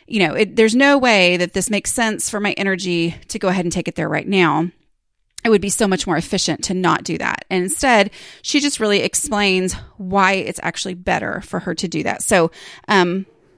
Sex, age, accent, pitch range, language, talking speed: female, 30-49, American, 185-250 Hz, English, 215 wpm